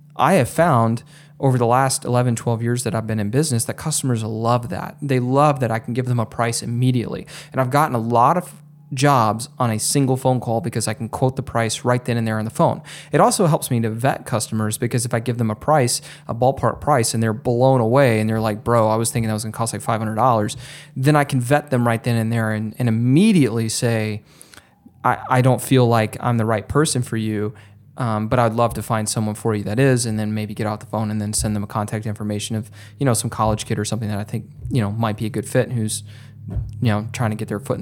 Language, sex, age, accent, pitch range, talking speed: English, male, 20-39, American, 110-130 Hz, 260 wpm